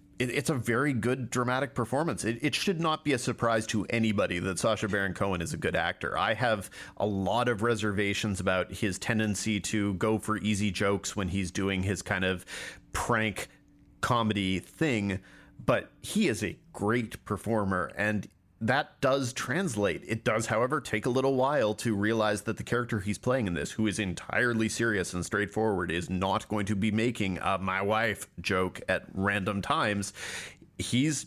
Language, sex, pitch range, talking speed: English, male, 100-125 Hz, 175 wpm